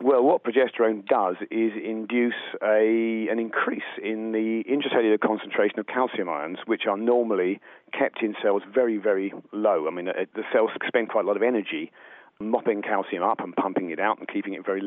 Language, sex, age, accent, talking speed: English, male, 40-59, British, 185 wpm